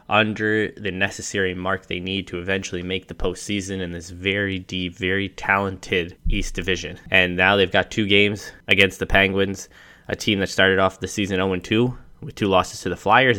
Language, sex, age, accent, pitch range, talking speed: English, male, 20-39, American, 95-110 Hz, 190 wpm